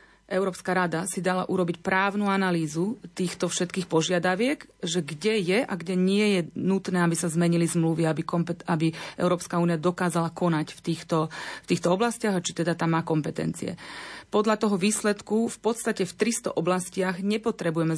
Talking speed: 165 wpm